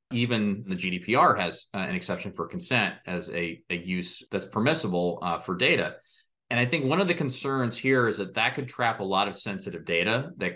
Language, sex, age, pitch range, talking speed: English, male, 30-49, 95-125 Hz, 210 wpm